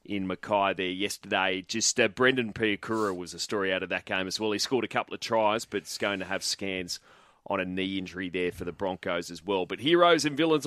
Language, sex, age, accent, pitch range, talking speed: English, male, 30-49, Australian, 115-140 Hz, 240 wpm